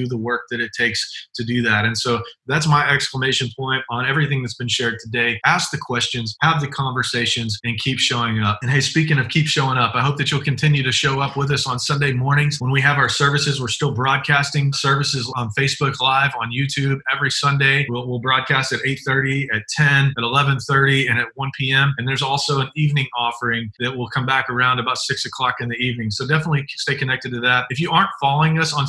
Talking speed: 225 wpm